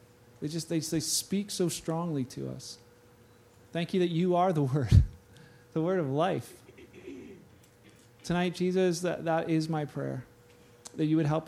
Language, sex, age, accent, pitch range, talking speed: English, male, 40-59, American, 120-155 Hz, 160 wpm